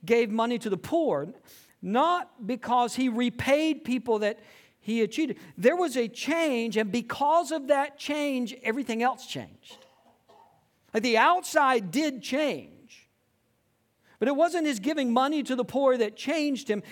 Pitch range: 180-285 Hz